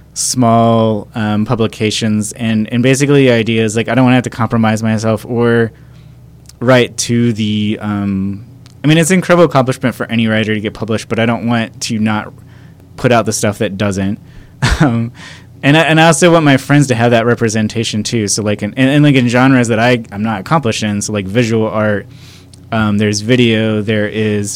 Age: 20-39